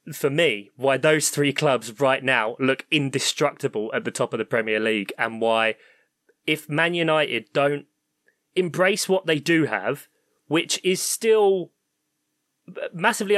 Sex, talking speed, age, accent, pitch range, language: male, 145 wpm, 20-39, British, 130-165 Hz, English